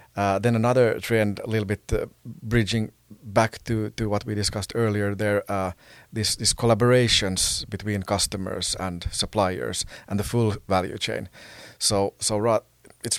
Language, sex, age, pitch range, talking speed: English, male, 30-49, 95-110 Hz, 155 wpm